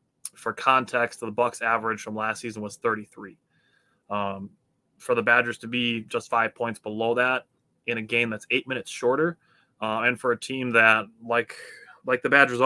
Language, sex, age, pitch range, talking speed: English, male, 20-39, 110-130 Hz, 180 wpm